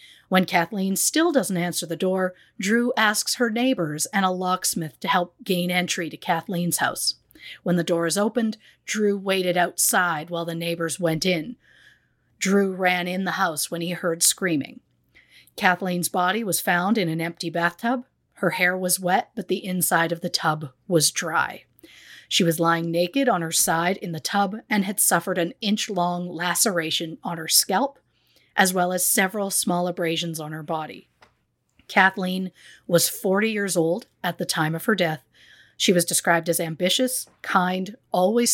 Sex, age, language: female, 40-59, English